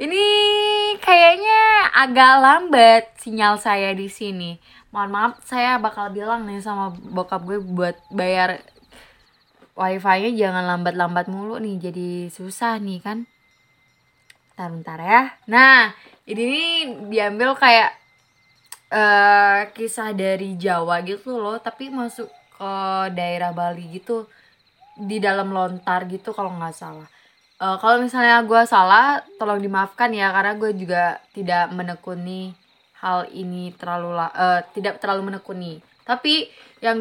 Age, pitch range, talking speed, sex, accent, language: 20-39, 180-225 Hz, 125 wpm, female, native, Indonesian